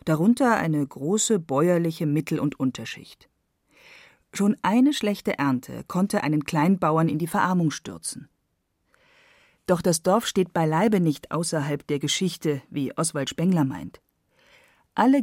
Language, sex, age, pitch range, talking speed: German, female, 40-59, 155-225 Hz, 125 wpm